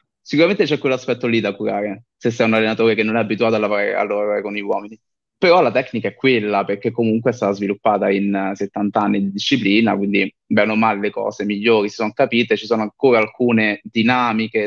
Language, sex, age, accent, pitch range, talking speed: Italian, male, 20-39, native, 105-120 Hz, 210 wpm